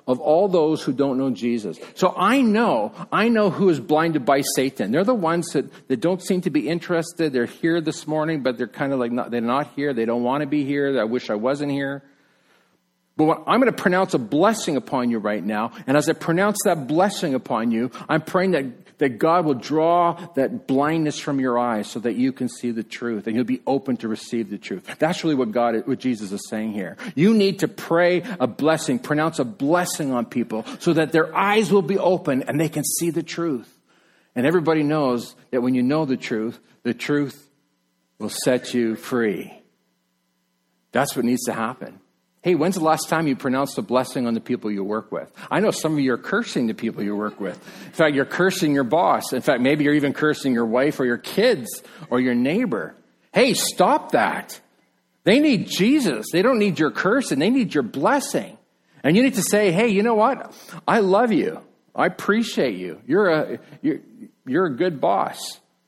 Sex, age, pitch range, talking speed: male, 50-69, 120-175 Hz, 215 wpm